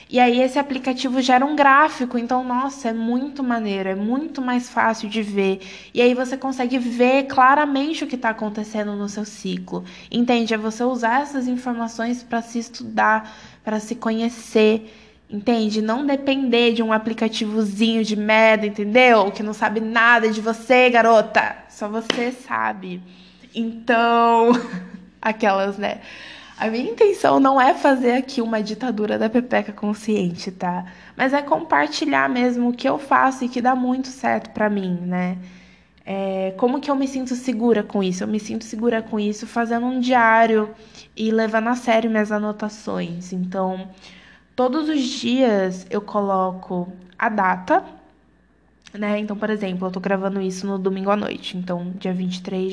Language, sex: Portuguese, female